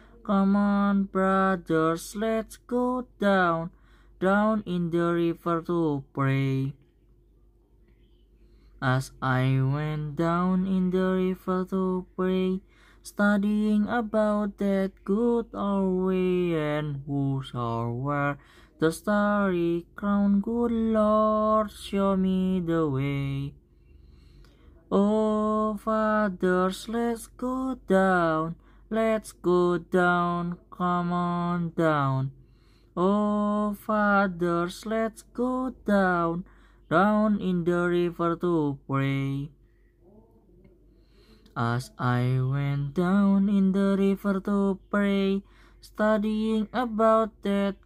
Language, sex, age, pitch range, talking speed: Indonesian, male, 20-39, 150-205 Hz, 95 wpm